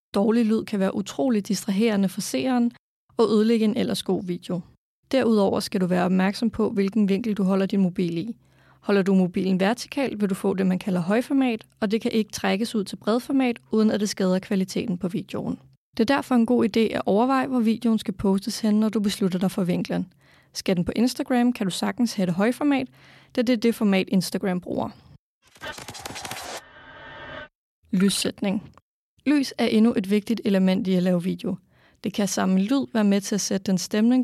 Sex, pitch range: female, 195-235 Hz